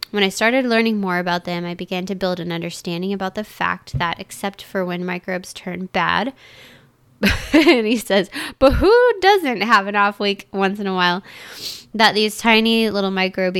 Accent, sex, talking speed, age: American, female, 185 wpm, 20-39